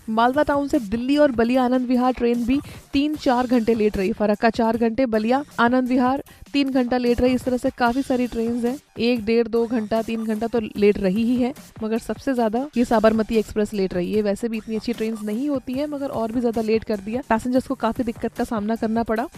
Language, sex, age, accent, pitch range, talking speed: Hindi, female, 20-39, native, 220-250 Hz, 230 wpm